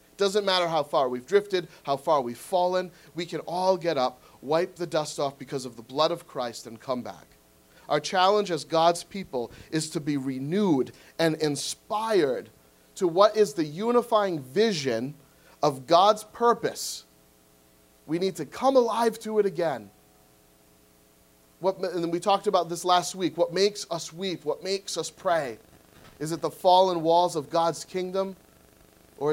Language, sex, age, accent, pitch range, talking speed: English, male, 30-49, American, 115-180 Hz, 165 wpm